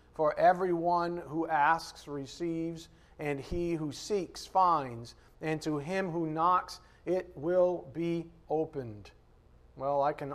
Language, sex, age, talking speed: English, male, 40-59, 130 wpm